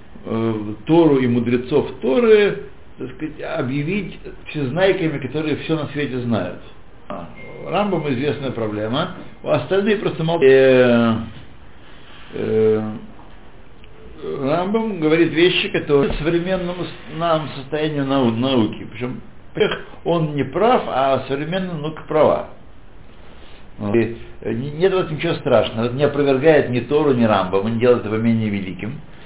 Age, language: 60-79, Russian